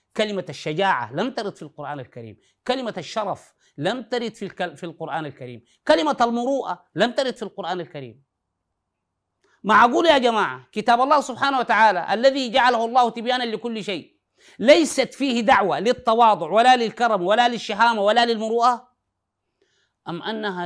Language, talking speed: Arabic, 135 wpm